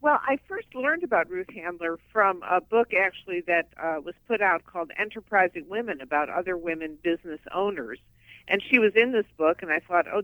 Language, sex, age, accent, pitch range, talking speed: English, female, 60-79, American, 150-210 Hz, 200 wpm